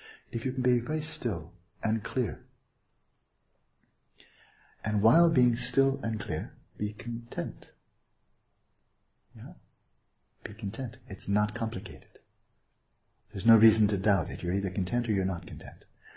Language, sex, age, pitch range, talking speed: English, male, 60-79, 95-125 Hz, 130 wpm